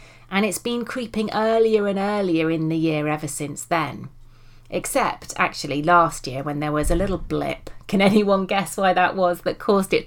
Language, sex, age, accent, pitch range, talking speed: English, female, 30-49, British, 140-180 Hz, 190 wpm